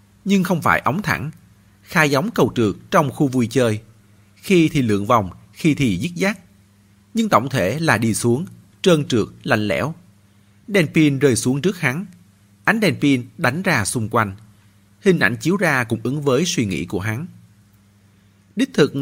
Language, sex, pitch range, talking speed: Vietnamese, male, 100-150 Hz, 180 wpm